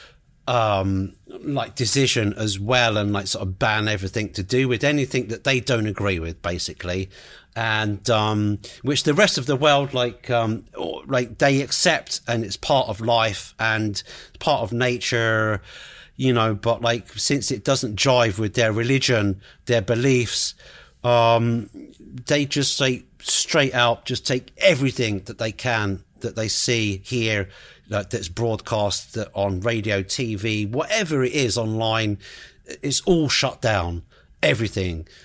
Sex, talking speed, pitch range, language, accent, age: male, 145 wpm, 105-130 Hz, English, British, 40-59